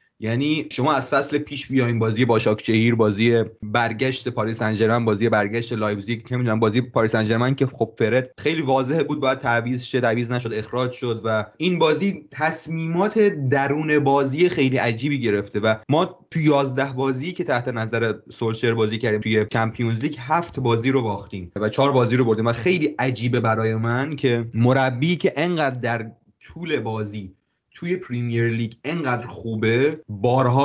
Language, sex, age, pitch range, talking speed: Persian, male, 30-49, 110-140 Hz, 165 wpm